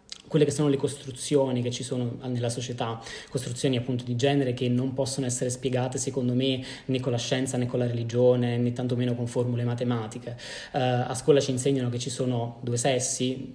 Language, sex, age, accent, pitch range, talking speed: Italian, male, 20-39, native, 120-140 Hz, 195 wpm